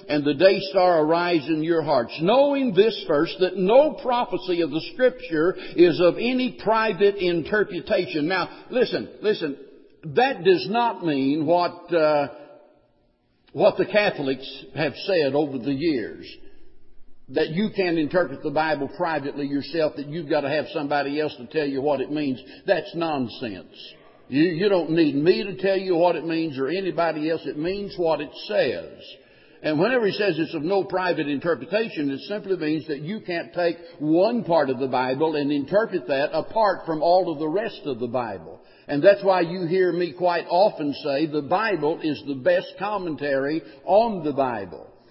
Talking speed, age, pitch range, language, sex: 175 wpm, 60-79, 155-205 Hz, English, male